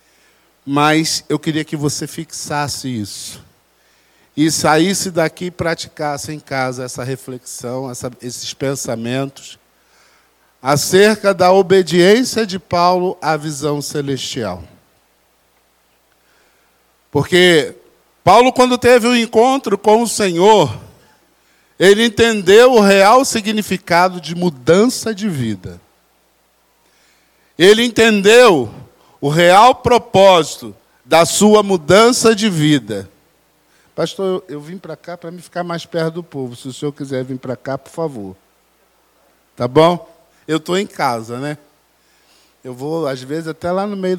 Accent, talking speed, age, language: Brazilian, 125 wpm, 50-69, Portuguese